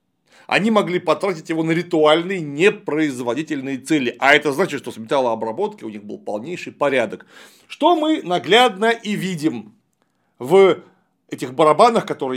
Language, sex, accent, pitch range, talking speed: Russian, male, native, 130-195 Hz, 135 wpm